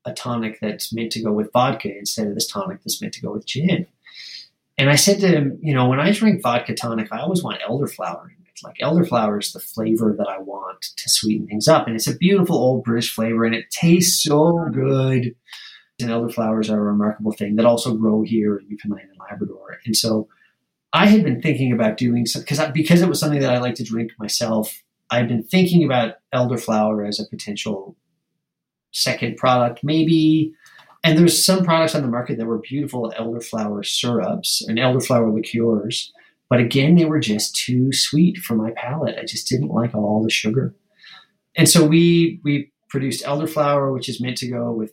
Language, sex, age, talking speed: English, male, 30-49, 195 wpm